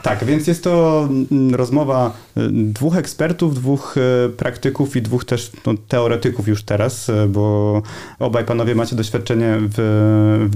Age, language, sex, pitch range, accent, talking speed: 30-49, Polish, male, 115-140 Hz, native, 125 wpm